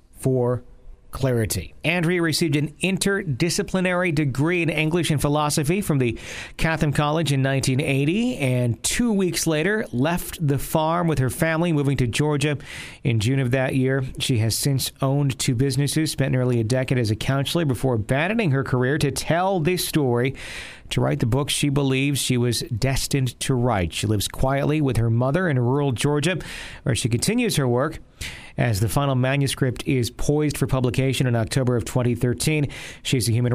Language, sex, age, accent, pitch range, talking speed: English, male, 40-59, American, 120-150 Hz, 170 wpm